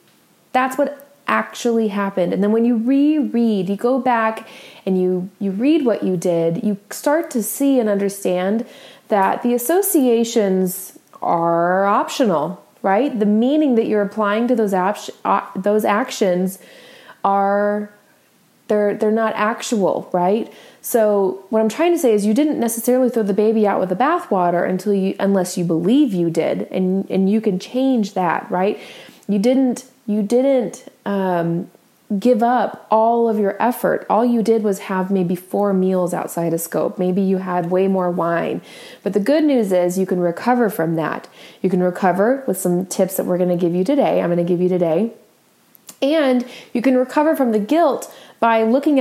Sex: female